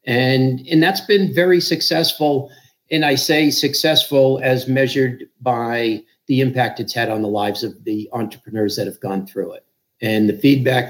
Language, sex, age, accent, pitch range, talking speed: English, male, 50-69, American, 120-150 Hz, 170 wpm